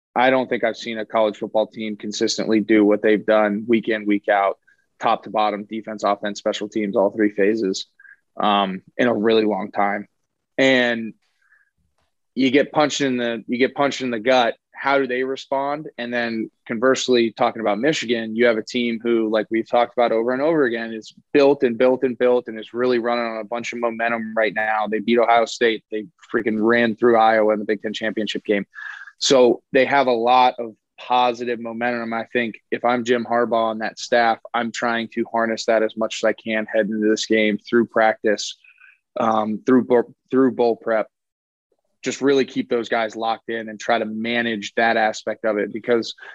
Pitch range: 110-120 Hz